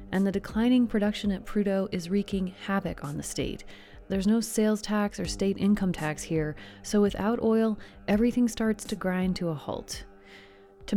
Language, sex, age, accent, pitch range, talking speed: English, female, 30-49, American, 170-220 Hz, 175 wpm